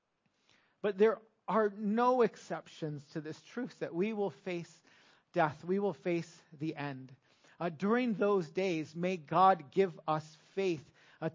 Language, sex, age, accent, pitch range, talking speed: English, male, 40-59, American, 160-200 Hz, 150 wpm